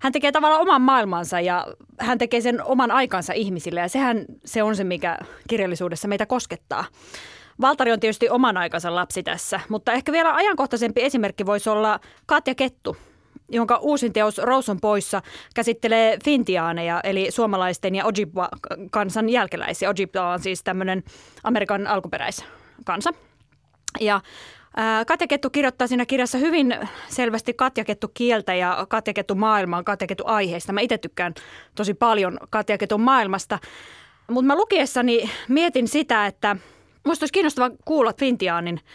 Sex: female